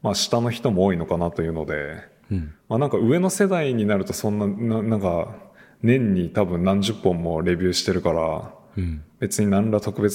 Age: 20-39